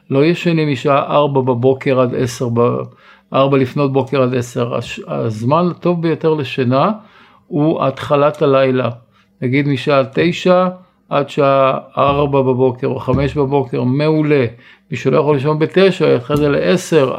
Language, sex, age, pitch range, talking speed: Hebrew, male, 50-69, 135-165 Hz, 135 wpm